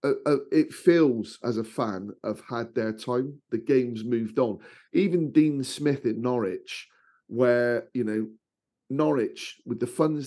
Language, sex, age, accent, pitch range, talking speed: English, male, 40-59, British, 110-145 Hz, 150 wpm